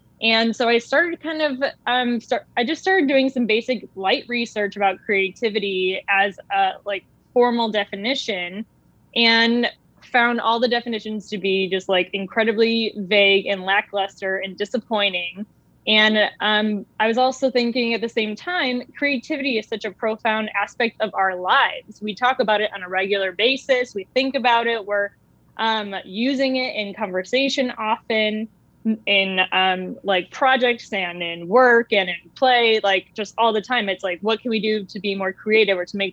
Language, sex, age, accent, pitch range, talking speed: English, female, 10-29, American, 195-235 Hz, 175 wpm